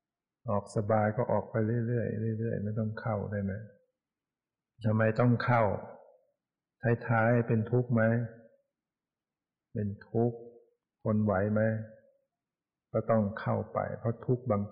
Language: Thai